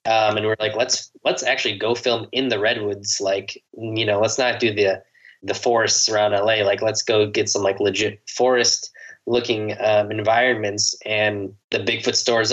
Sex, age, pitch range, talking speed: male, 20-39, 105-130 Hz, 180 wpm